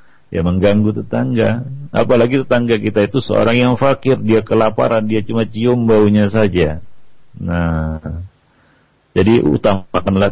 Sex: male